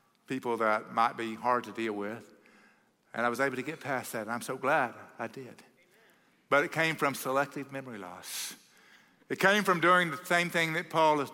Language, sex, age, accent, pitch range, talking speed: English, male, 50-69, American, 150-205 Hz, 205 wpm